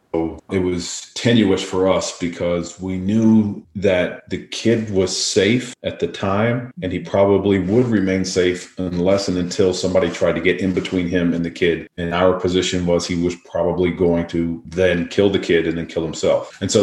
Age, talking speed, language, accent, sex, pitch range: 40-59, 195 wpm, English, American, male, 85-95 Hz